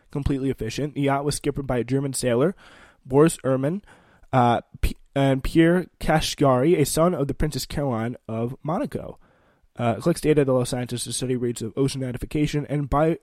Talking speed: 175 wpm